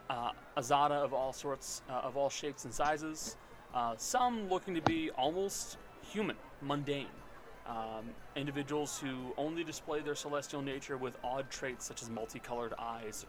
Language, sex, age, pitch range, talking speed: English, male, 30-49, 120-145 Hz, 155 wpm